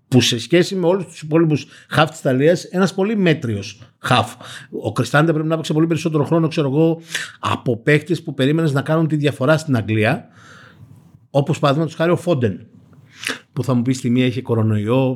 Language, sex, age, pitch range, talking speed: Greek, male, 50-69, 120-165 Hz, 180 wpm